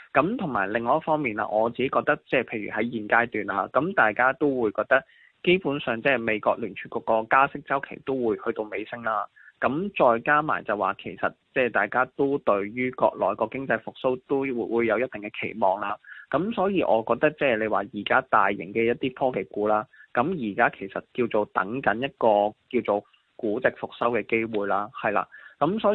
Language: Chinese